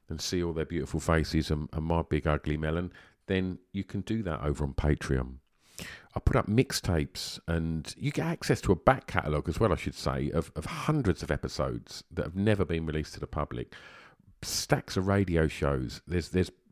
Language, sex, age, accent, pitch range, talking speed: English, male, 50-69, British, 80-100 Hz, 200 wpm